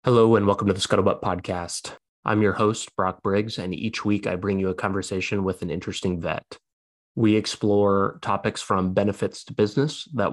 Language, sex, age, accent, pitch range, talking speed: English, male, 20-39, American, 95-110 Hz, 185 wpm